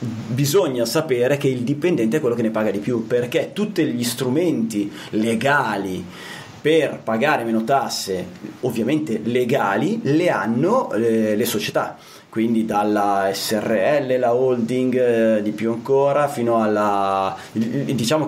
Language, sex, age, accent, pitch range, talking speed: Italian, male, 30-49, native, 110-145 Hz, 130 wpm